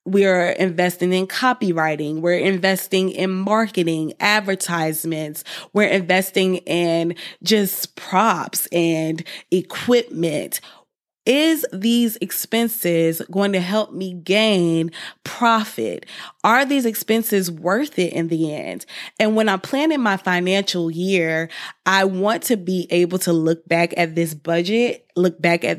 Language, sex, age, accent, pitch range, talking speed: English, female, 20-39, American, 170-205 Hz, 130 wpm